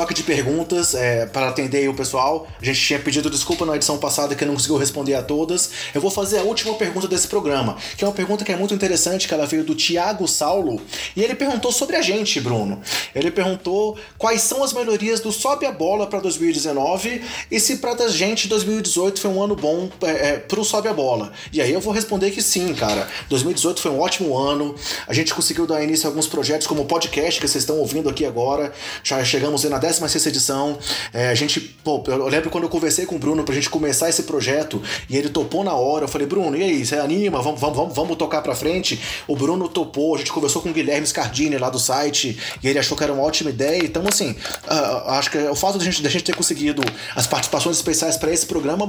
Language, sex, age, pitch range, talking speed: Portuguese, male, 20-39, 145-185 Hz, 230 wpm